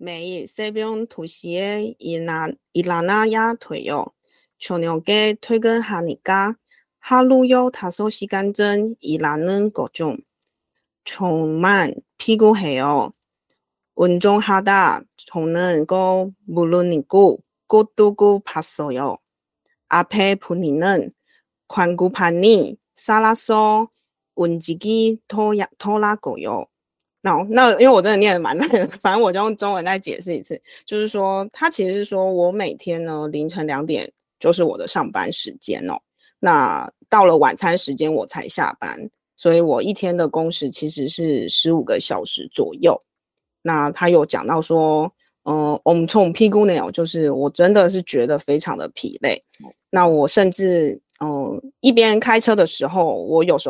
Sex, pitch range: female, 165-215 Hz